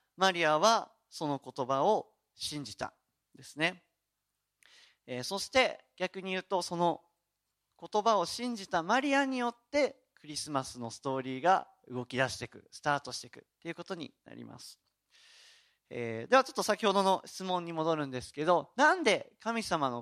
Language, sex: Japanese, male